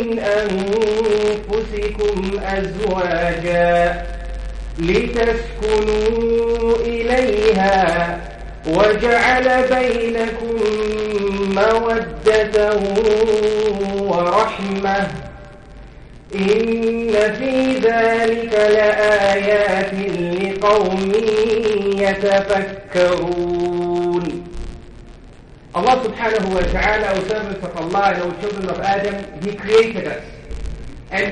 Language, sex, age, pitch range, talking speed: English, male, 40-59, 195-225 Hz, 60 wpm